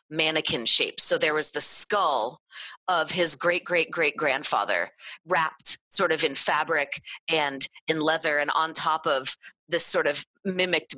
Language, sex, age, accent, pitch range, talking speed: English, female, 30-49, American, 150-185 Hz, 160 wpm